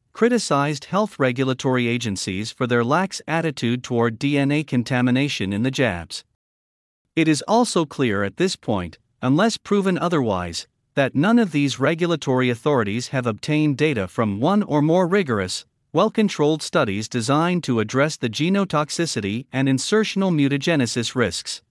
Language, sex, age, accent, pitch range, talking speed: English, male, 50-69, American, 115-170 Hz, 135 wpm